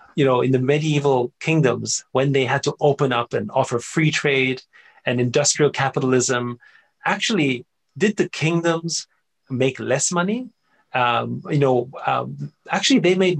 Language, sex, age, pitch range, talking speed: English, male, 30-49, 125-165 Hz, 150 wpm